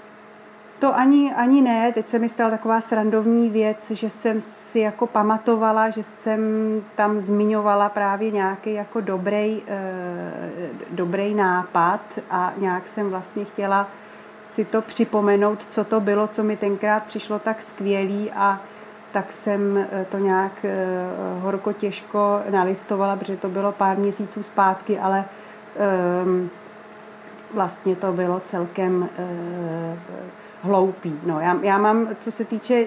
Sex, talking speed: female, 120 wpm